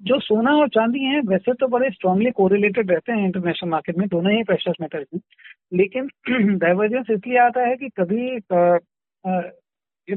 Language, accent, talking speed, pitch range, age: Hindi, native, 165 wpm, 190-240 Hz, 50-69